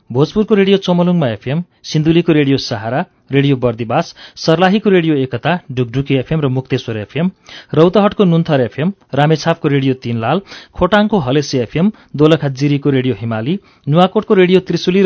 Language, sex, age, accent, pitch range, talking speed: English, male, 40-59, Indian, 135-180 Hz, 110 wpm